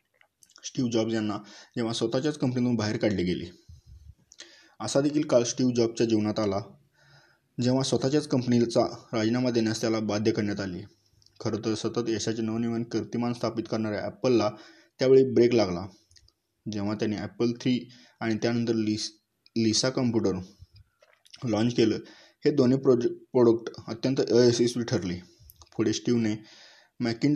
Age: 20-39